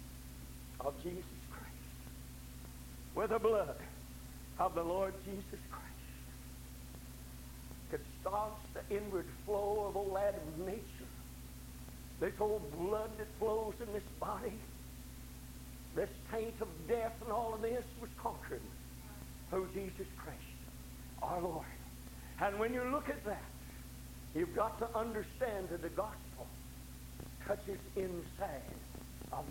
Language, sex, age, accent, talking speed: English, male, 60-79, American, 120 wpm